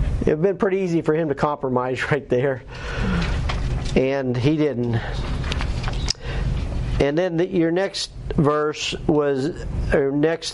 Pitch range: 140-175 Hz